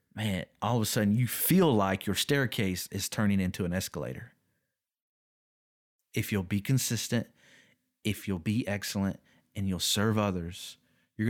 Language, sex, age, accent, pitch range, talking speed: English, male, 30-49, American, 95-115 Hz, 150 wpm